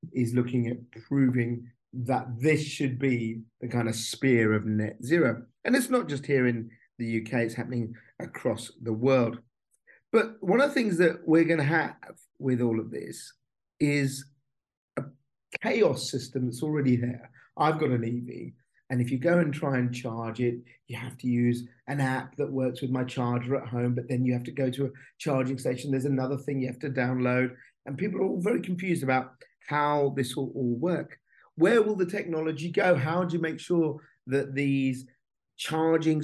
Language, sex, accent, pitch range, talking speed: English, male, British, 125-150 Hz, 195 wpm